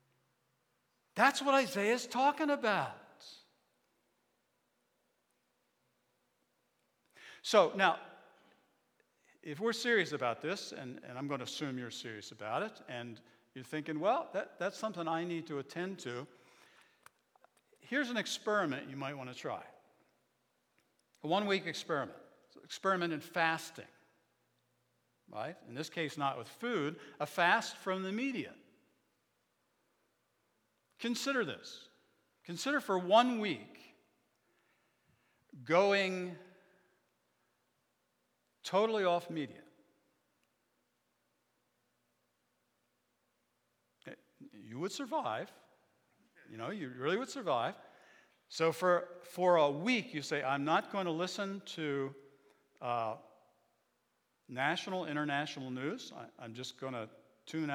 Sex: male